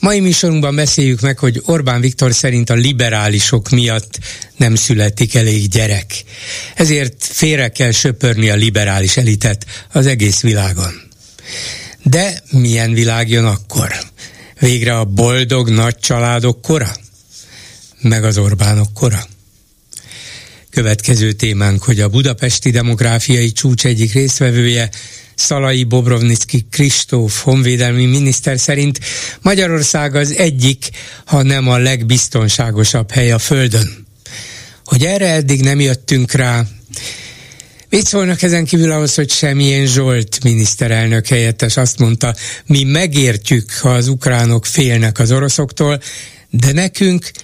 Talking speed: 120 wpm